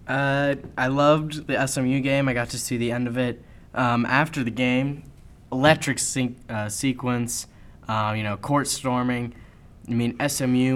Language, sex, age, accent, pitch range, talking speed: English, male, 10-29, American, 110-130 Hz, 165 wpm